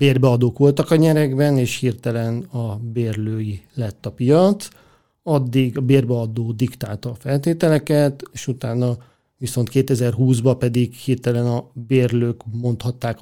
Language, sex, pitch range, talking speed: Hungarian, male, 120-140 Hz, 120 wpm